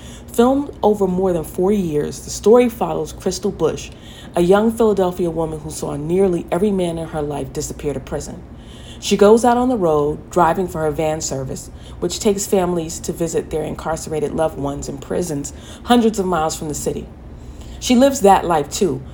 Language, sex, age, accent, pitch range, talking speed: English, female, 40-59, American, 150-195 Hz, 185 wpm